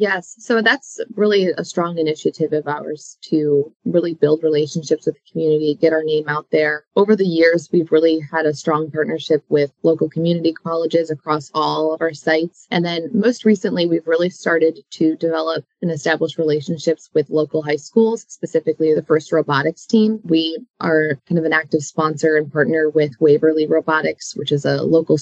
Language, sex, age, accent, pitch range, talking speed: English, female, 20-39, American, 155-175 Hz, 180 wpm